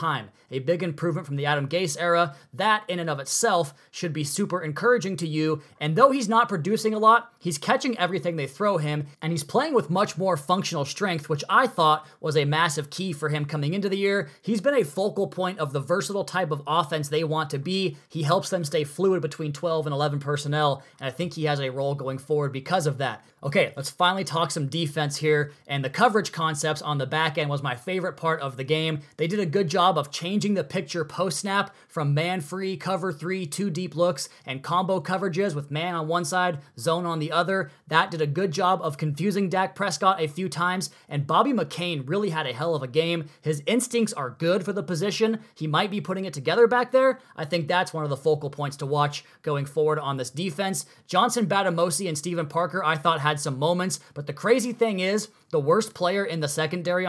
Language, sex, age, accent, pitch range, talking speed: English, male, 20-39, American, 150-190 Hz, 225 wpm